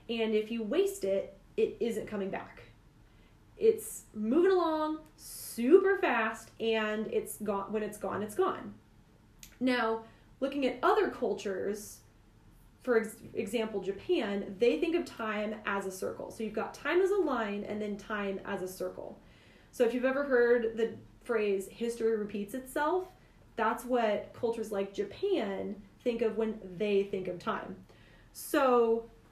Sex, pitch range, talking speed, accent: female, 200-255 Hz, 150 wpm, American